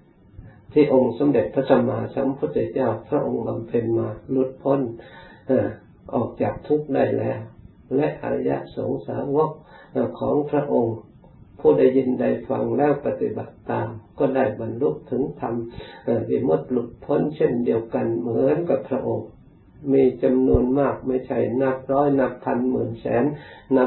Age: 60-79